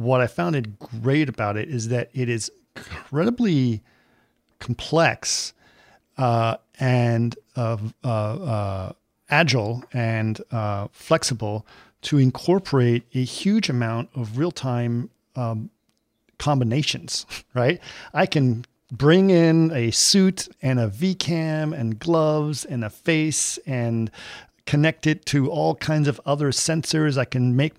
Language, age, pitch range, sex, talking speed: English, 40-59, 120-155 Hz, male, 125 wpm